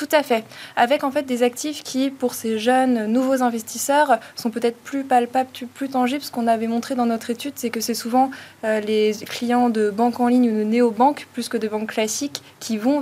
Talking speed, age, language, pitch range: 220 wpm, 20-39, French, 220-250 Hz